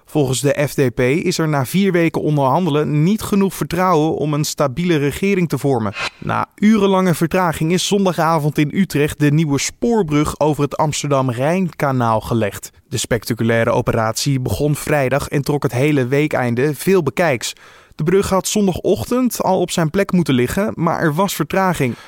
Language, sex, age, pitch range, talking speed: Dutch, male, 20-39, 135-170 Hz, 160 wpm